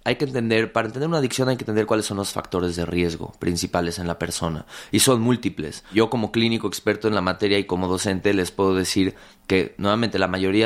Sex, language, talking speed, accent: male, Spanish, 225 wpm, Mexican